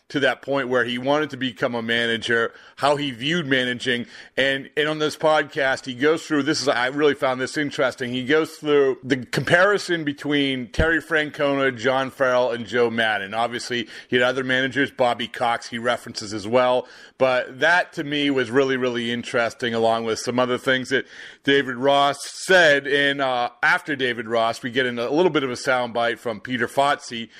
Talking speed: 190 wpm